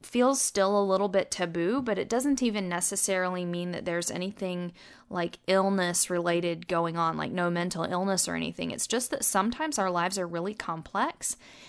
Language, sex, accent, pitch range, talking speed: English, female, American, 180-230 Hz, 180 wpm